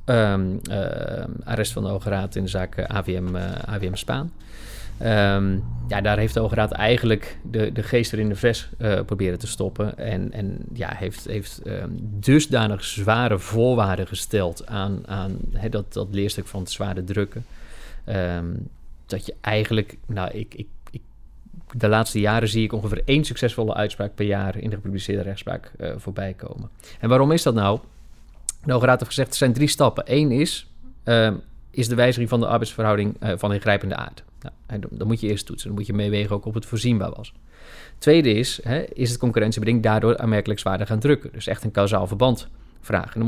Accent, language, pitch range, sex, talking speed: Dutch, Dutch, 100-120 Hz, male, 190 wpm